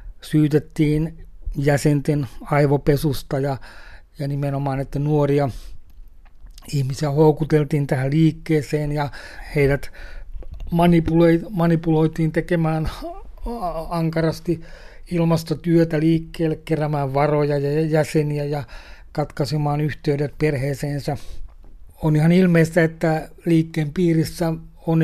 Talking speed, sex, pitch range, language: 80 wpm, male, 145-160 Hz, Finnish